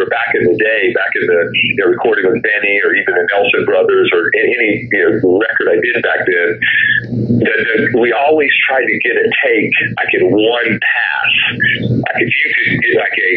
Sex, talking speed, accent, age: male, 205 wpm, American, 40-59